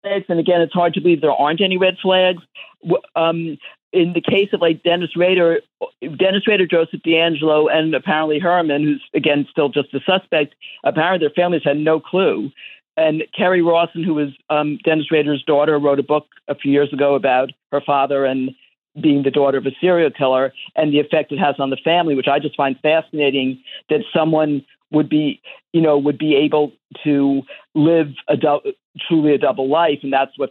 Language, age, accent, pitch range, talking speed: English, 50-69, American, 140-165 Hz, 195 wpm